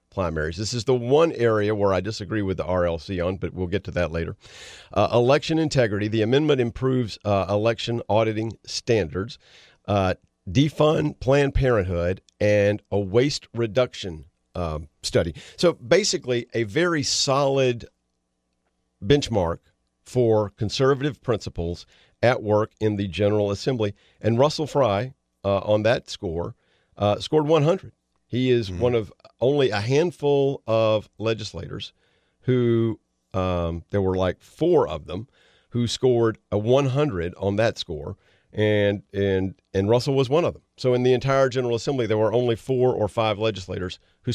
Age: 50-69